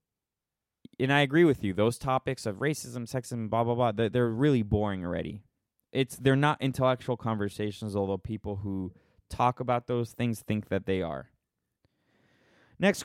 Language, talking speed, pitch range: English, 155 wpm, 100-130 Hz